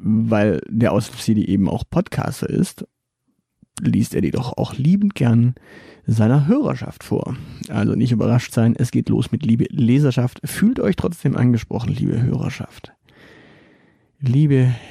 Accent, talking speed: German, 135 wpm